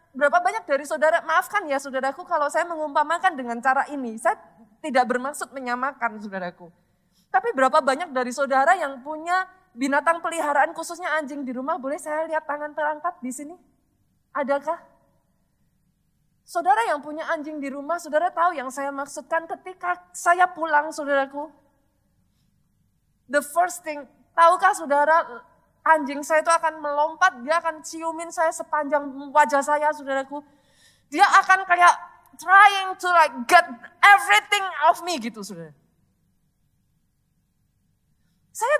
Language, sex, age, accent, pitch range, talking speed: Indonesian, female, 20-39, native, 280-355 Hz, 130 wpm